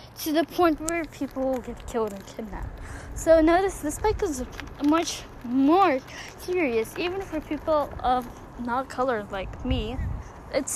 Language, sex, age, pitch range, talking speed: English, female, 10-29, 245-320 Hz, 150 wpm